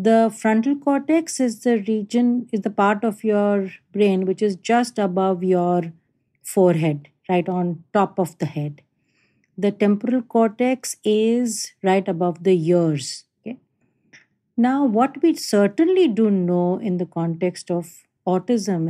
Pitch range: 175-230 Hz